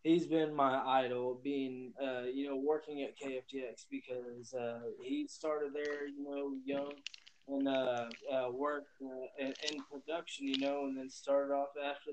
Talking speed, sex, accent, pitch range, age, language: 165 wpm, male, American, 130-150 Hz, 20-39, English